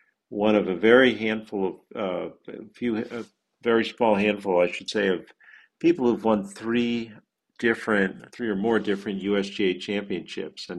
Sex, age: male, 50-69